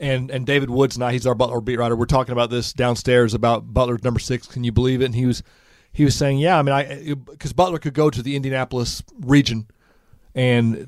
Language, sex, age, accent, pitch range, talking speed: English, male, 40-59, American, 125-150 Hz, 235 wpm